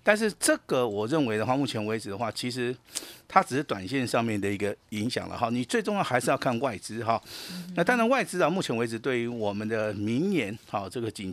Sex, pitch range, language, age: male, 110-155 Hz, Chinese, 50-69